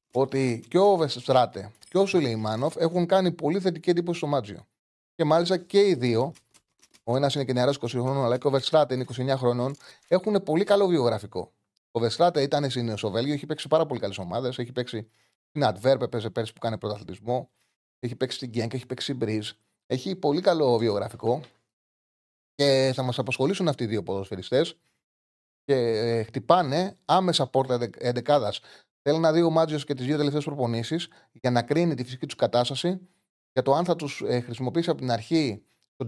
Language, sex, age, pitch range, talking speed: Greek, male, 30-49, 115-160 Hz, 185 wpm